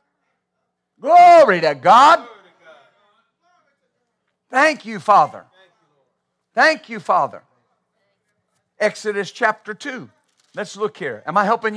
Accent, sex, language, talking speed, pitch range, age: American, male, English, 90 wpm, 165-230 Hz, 50-69